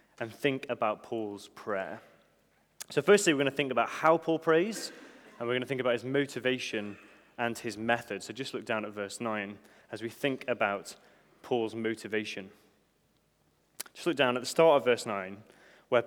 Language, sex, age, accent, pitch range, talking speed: English, male, 20-39, British, 115-155 Hz, 185 wpm